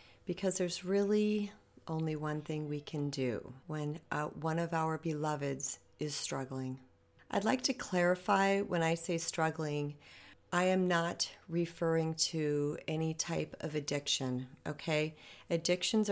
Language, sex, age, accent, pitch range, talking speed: English, female, 40-59, American, 145-165 Hz, 135 wpm